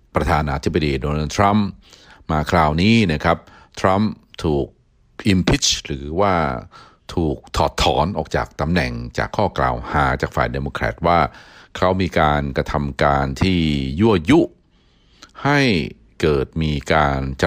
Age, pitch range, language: 60-79, 70-90 Hz, Thai